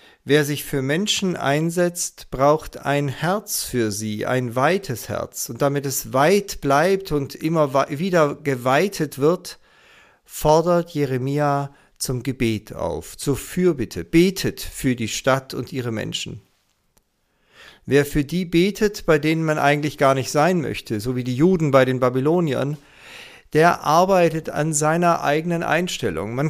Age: 50-69